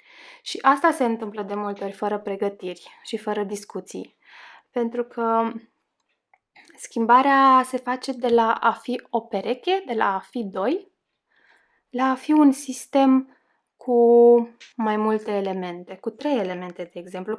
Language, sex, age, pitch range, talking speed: Romanian, female, 20-39, 190-240 Hz, 145 wpm